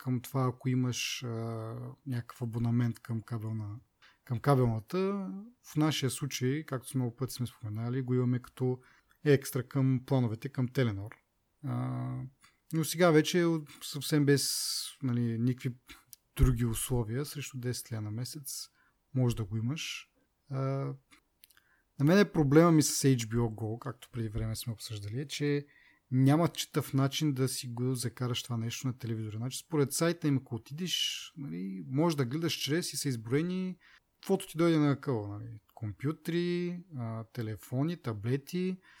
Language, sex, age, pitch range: Bulgarian, male, 30-49, 120-150 Hz